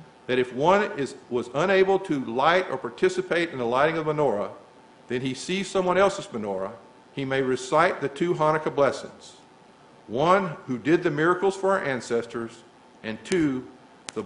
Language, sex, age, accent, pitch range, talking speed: English, male, 50-69, American, 125-170 Hz, 165 wpm